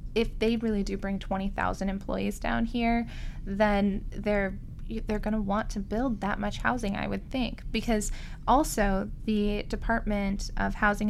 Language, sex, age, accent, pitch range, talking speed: English, female, 20-39, American, 195-220 Hz, 155 wpm